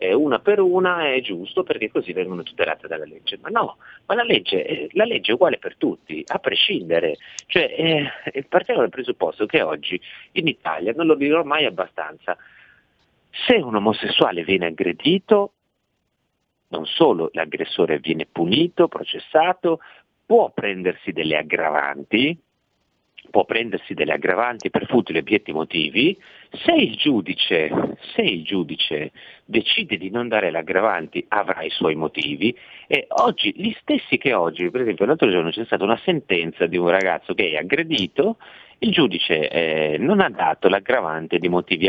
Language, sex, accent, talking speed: Italian, male, native, 145 wpm